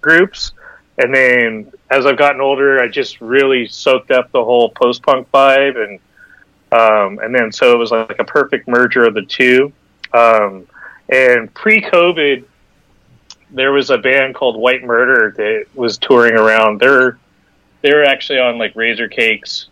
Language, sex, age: English, male, 30-49